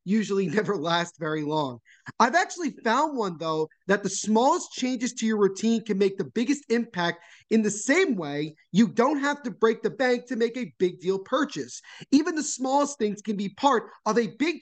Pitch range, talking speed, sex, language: 190-245 Hz, 200 wpm, male, English